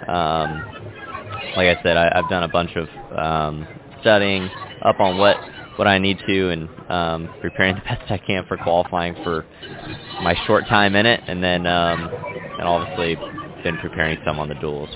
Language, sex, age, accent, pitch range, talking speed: English, male, 20-39, American, 80-100 Hz, 180 wpm